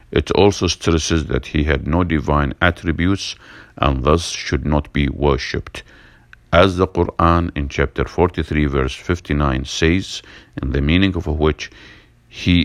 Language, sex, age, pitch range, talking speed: English, male, 50-69, 70-85 Hz, 140 wpm